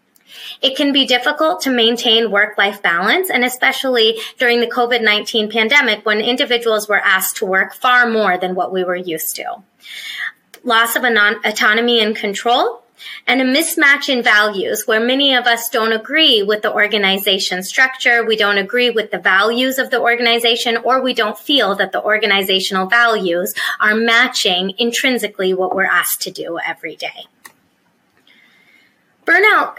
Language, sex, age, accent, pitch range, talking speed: English, female, 20-39, American, 200-255 Hz, 155 wpm